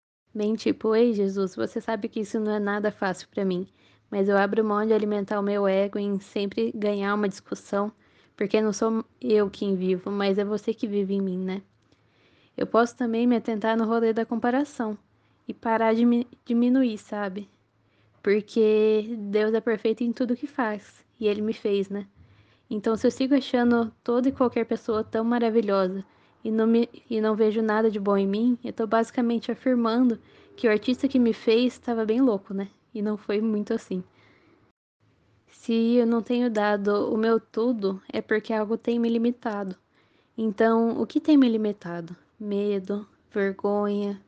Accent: Brazilian